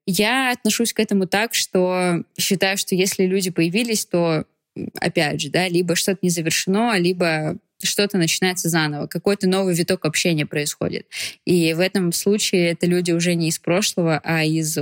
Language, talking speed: Russian, 160 wpm